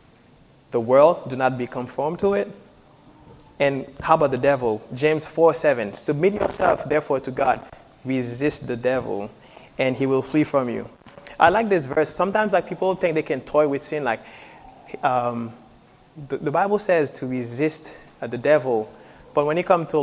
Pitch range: 125-155 Hz